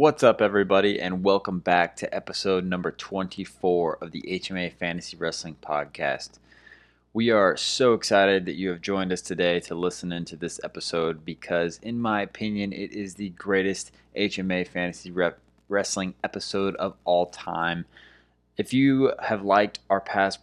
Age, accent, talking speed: 20-39, American, 155 wpm